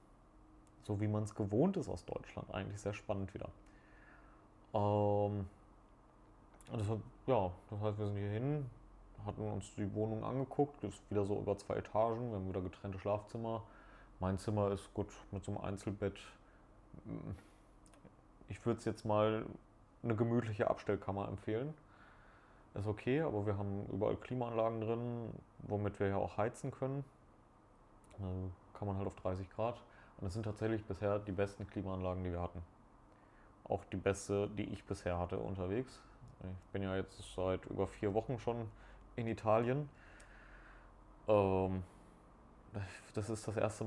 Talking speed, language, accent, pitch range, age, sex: 150 wpm, German, German, 95-110 Hz, 30-49, male